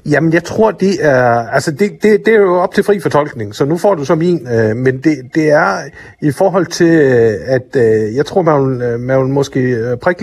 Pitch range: 120-155 Hz